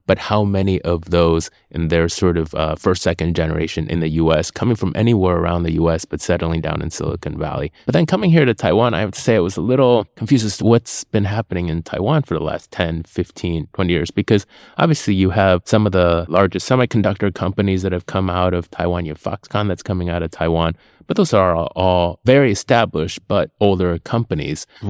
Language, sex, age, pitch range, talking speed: English, male, 20-39, 85-105 Hz, 215 wpm